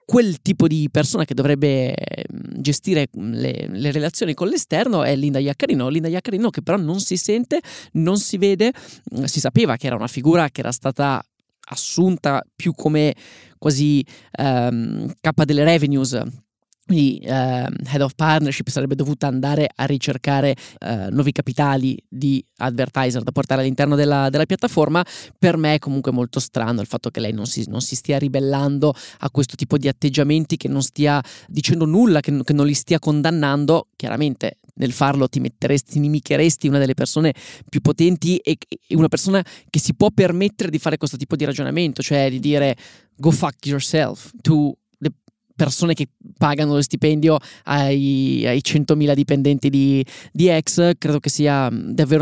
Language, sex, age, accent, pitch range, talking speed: Italian, male, 20-39, native, 135-160 Hz, 160 wpm